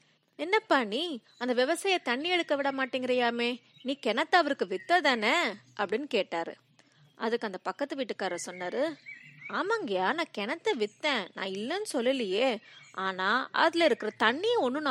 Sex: female